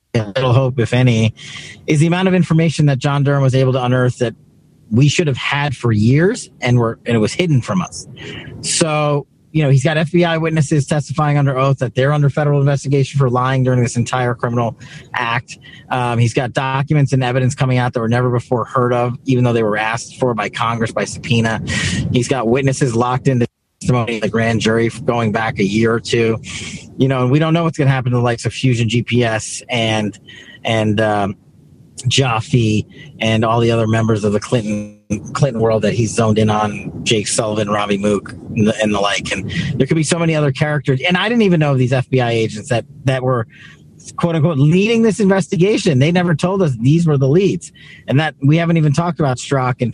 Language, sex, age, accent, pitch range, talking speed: English, male, 40-59, American, 115-150 Hz, 215 wpm